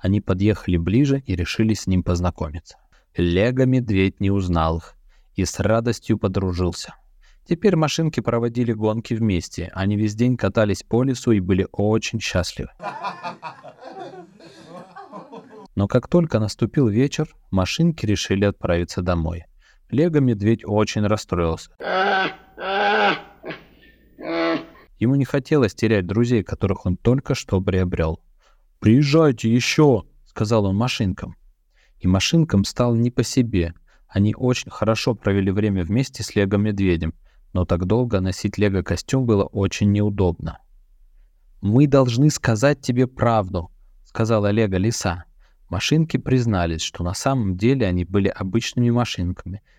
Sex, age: male, 20-39